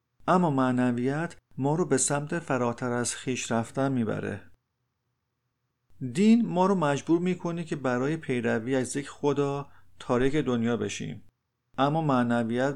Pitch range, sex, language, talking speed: 120-140 Hz, male, Persian, 125 wpm